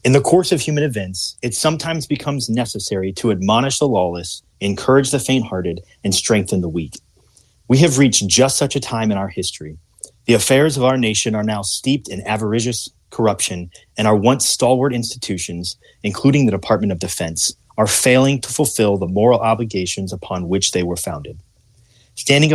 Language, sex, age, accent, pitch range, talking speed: English, male, 30-49, American, 95-130 Hz, 175 wpm